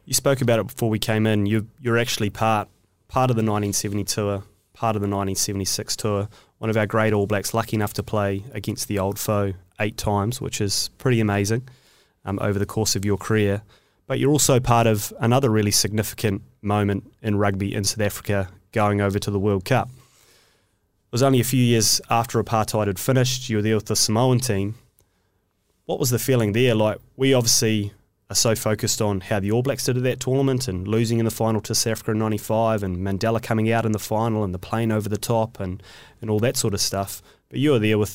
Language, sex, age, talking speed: English, male, 20-39, 220 wpm